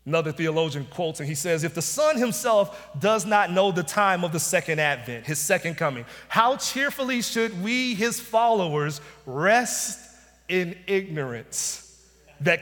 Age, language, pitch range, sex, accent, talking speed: 40-59, English, 165-240 Hz, male, American, 150 wpm